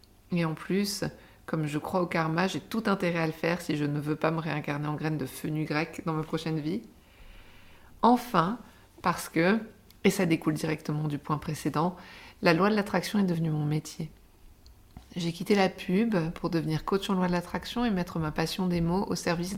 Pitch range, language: 155-195 Hz, French